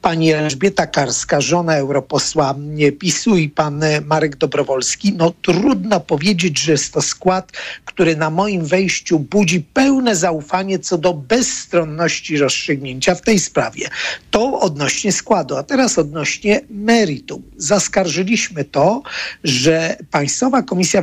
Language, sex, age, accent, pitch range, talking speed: Polish, male, 50-69, native, 150-195 Hz, 125 wpm